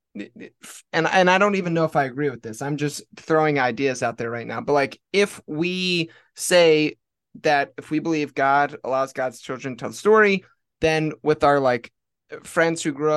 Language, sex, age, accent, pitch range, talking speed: English, male, 20-39, American, 135-165 Hz, 195 wpm